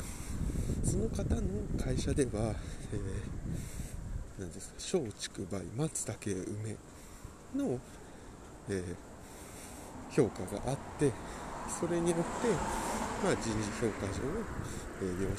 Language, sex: Japanese, male